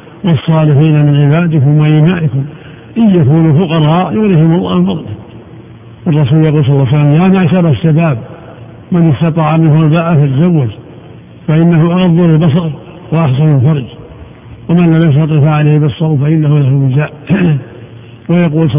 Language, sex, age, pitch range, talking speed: Arabic, male, 60-79, 135-165 Hz, 120 wpm